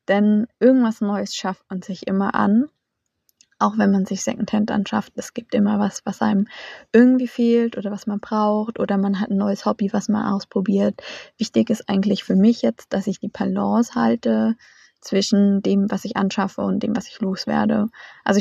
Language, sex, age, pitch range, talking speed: German, female, 20-39, 200-235 Hz, 185 wpm